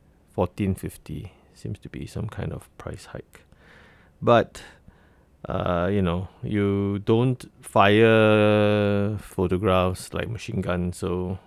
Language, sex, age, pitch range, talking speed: English, male, 30-49, 85-105 Hz, 120 wpm